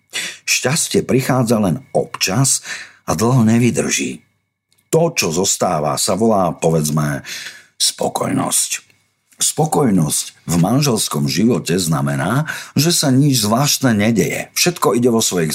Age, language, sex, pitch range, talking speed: 50-69, Slovak, male, 90-135 Hz, 110 wpm